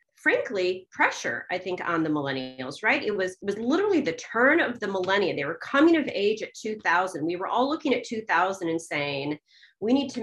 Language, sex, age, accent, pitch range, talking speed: English, female, 30-49, American, 170-255 Hz, 210 wpm